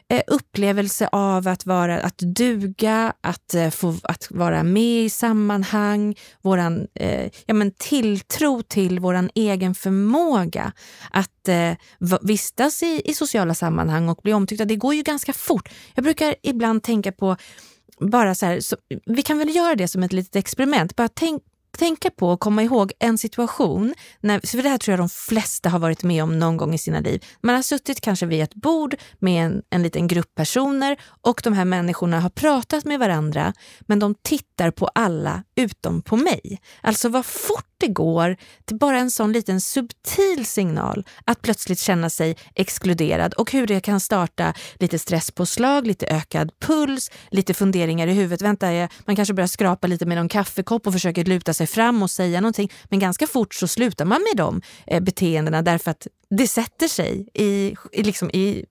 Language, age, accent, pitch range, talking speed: Swedish, 30-49, native, 180-235 Hz, 180 wpm